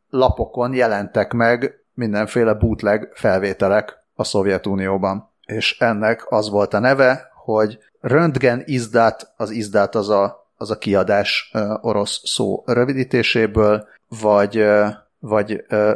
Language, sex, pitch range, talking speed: Hungarian, male, 100-120 Hz, 105 wpm